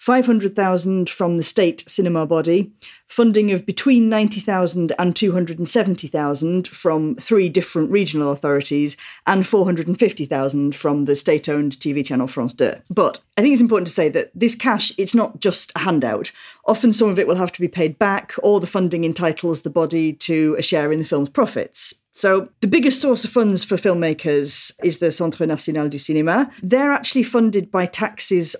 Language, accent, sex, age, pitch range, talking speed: English, British, female, 40-59, 150-200 Hz, 175 wpm